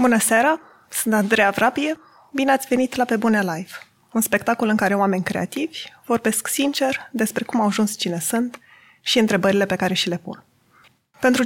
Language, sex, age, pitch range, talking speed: Romanian, female, 20-39, 205-270 Hz, 180 wpm